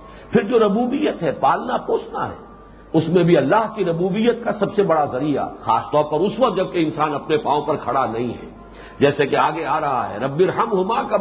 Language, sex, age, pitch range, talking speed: English, male, 50-69, 150-235 Hz, 210 wpm